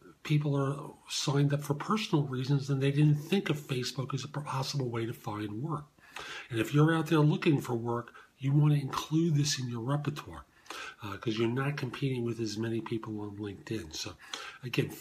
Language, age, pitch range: English, 50-69, 115-150 Hz